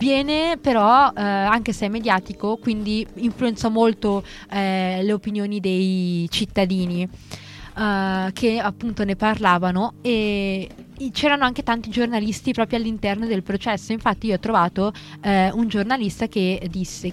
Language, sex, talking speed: Italian, female, 135 wpm